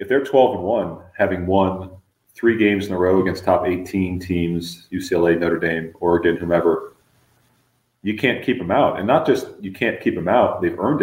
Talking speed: 195 wpm